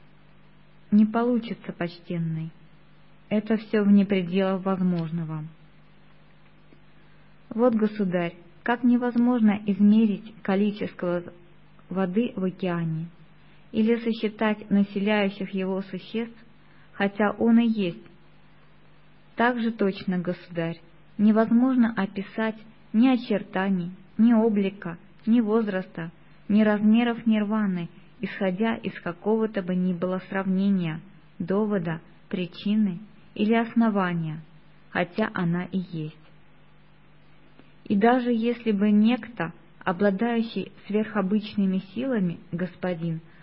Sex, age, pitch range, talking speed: female, 20-39, 180-220 Hz, 90 wpm